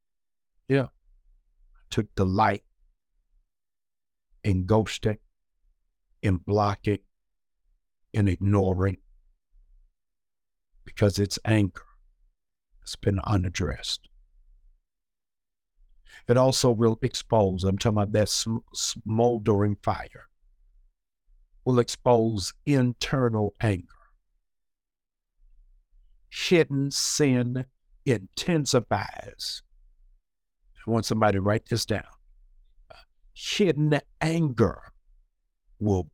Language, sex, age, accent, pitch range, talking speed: English, male, 60-79, American, 75-115 Hz, 75 wpm